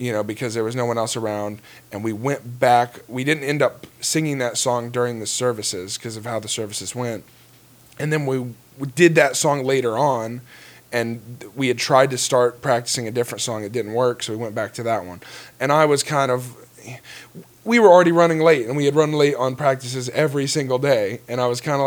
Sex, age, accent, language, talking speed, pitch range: male, 20-39, American, English, 230 wpm, 115-135 Hz